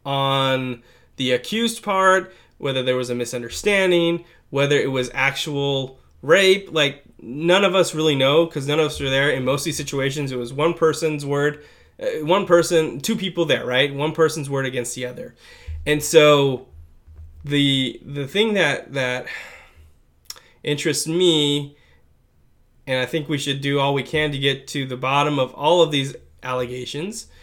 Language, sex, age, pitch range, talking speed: English, male, 20-39, 125-160 Hz, 165 wpm